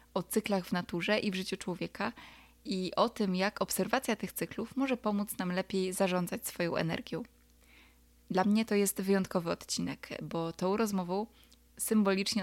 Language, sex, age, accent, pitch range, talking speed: Polish, female, 20-39, native, 180-205 Hz, 155 wpm